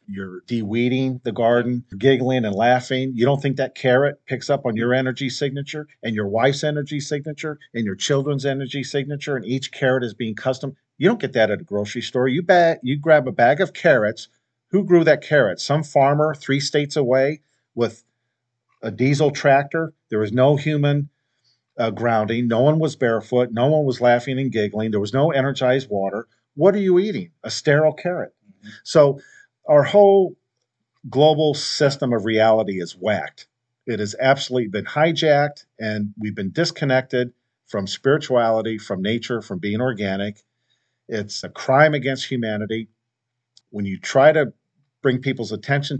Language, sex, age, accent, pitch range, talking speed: English, male, 50-69, American, 115-145 Hz, 165 wpm